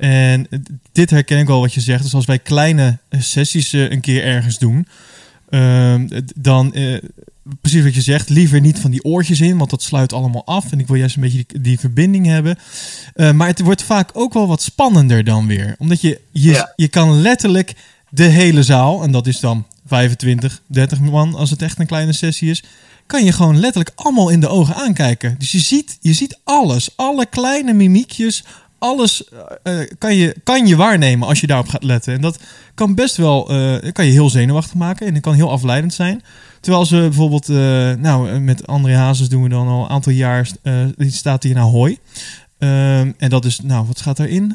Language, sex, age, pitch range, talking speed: Dutch, male, 20-39, 130-170 Hz, 205 wpm